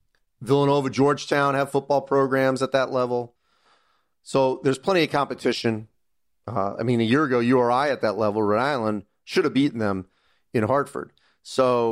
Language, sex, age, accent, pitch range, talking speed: English, male, 40-59, American, 120-145 Hz, 170 wpm